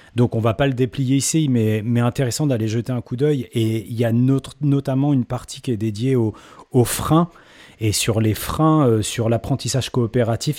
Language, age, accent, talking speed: French, 30-49, French, 215 wpm